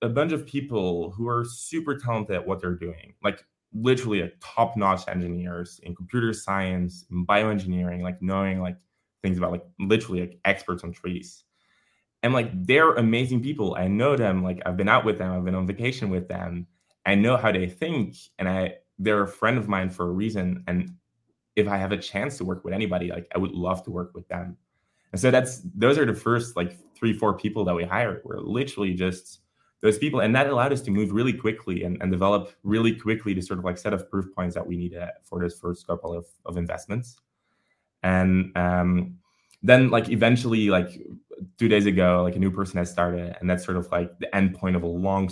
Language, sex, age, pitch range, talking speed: English, male, 20-39, 90-110 Hz, 215 wpm